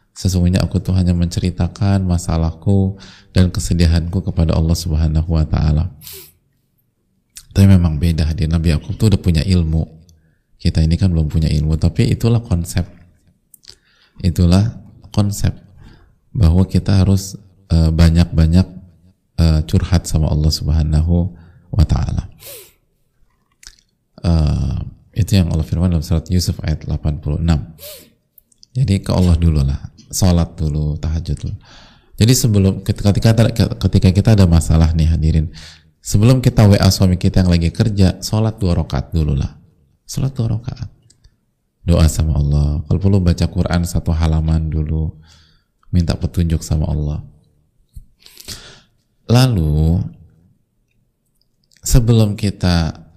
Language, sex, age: Indonesian, male, 20-39